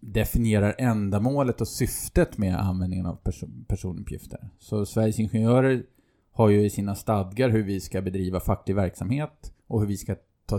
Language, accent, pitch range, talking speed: Swedish, Norwegian, 95-115 Hz, 155 wpm